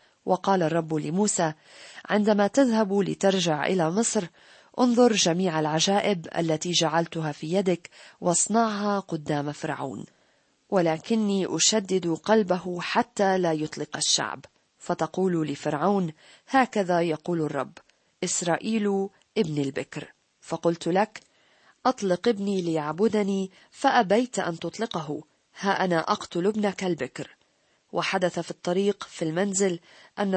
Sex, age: female, 40-59